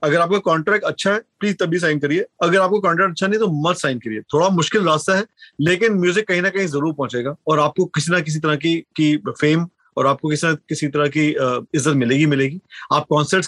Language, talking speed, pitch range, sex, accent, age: Hindi, 225 wpm, 150-210 Hz, male, native, 30-49